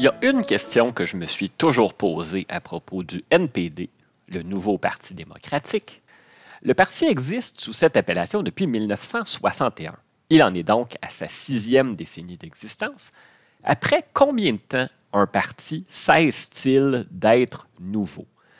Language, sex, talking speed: French, male, 145 wpm